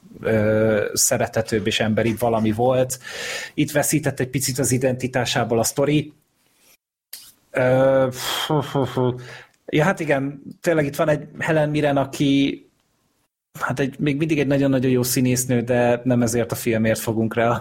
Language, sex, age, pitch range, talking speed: Hungarian, male, 30-49, 115-145 Hz, 130 wpm